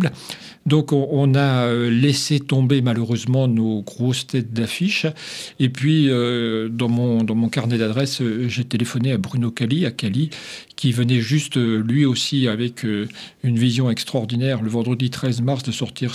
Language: French